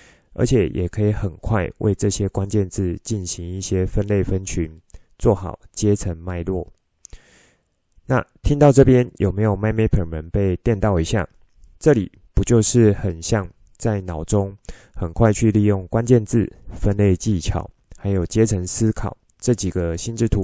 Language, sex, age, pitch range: Chinese, male, 20-39, 90-110 Hz